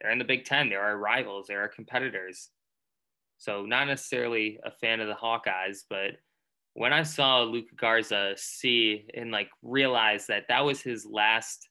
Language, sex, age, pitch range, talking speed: English, male, 20-39, 105-130 Hz, 175 wpm